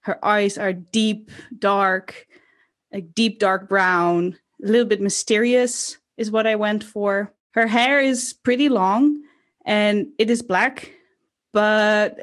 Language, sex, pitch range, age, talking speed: English, female, 200-255 Hz, 20-39, 135 wpm